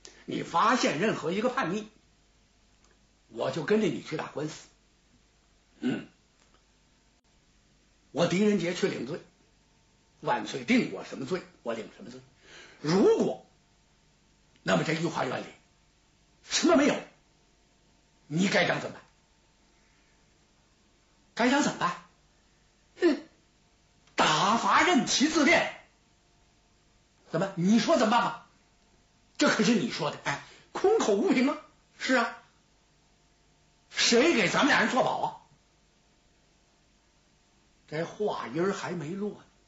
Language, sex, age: Chinese, male, 60-79